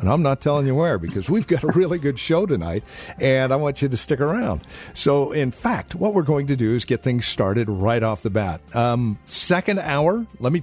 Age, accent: 50-69, American